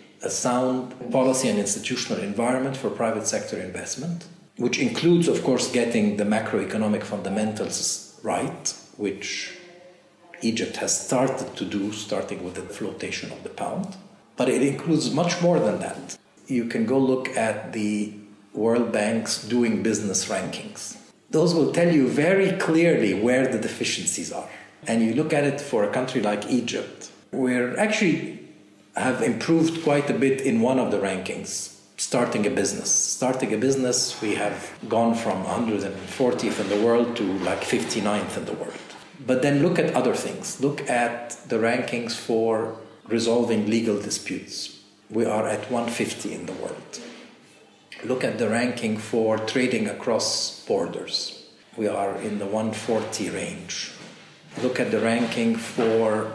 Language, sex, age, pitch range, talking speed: English, male, 50-69, 110-145 Hz, 150 wpm